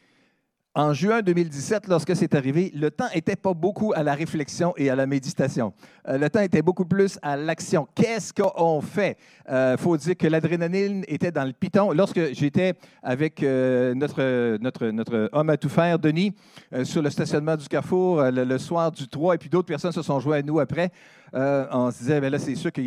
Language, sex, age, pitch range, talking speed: French, male, 50-69, 150-190 Hz, 220 wpm